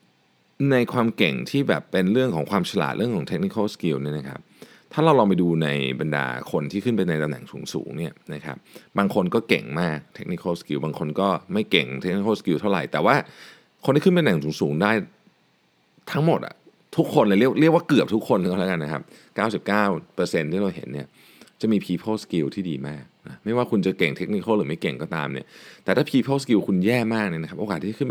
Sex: male